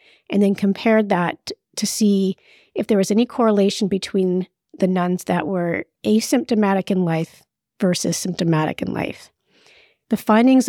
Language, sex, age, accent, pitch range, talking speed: English, female, 40-59, American, 170-210 Hz, 140 wpm